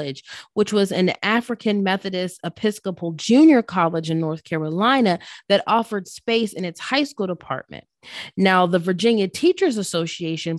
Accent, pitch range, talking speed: American, 165-210 Hz, 135 wpm